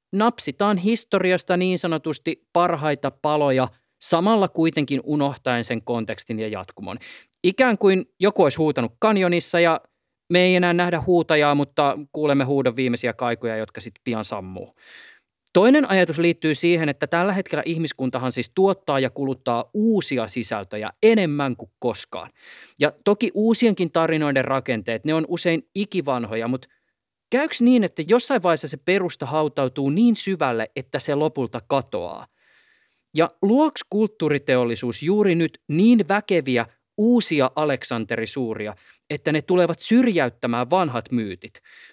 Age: 30-49